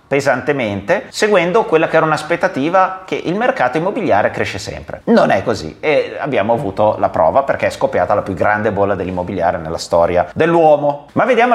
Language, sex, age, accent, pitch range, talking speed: Italian, male, 30-49, native, 120-170 Hz, 170 wpm